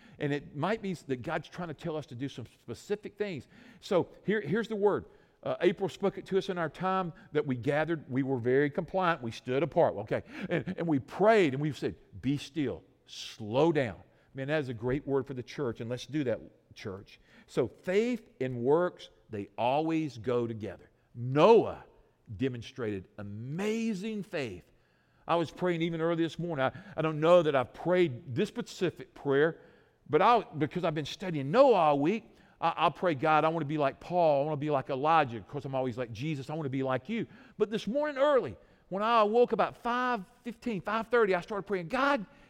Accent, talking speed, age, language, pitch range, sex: American, 200 wpm, 50-69, English, 135-200 Hz, male